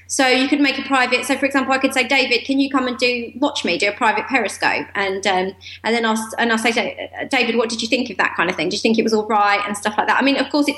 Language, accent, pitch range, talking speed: English, British, 230-290 Hz, 325 wpm